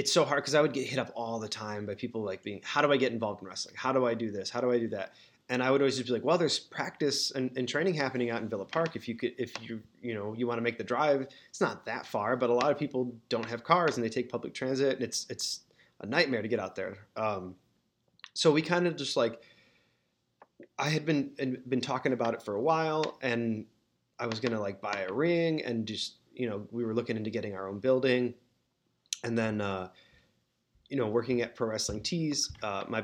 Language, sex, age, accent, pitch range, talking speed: English, male, 20-39, American, 110-135 Hz, 255 wpm